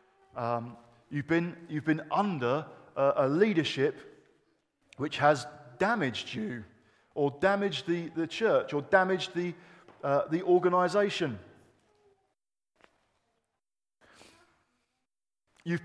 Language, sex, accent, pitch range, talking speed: English, male, British, 130-195 Hz, 95 wpm